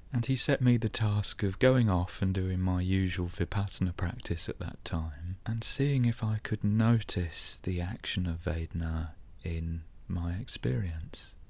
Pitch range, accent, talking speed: 90-110 Hz, British, 160 wpm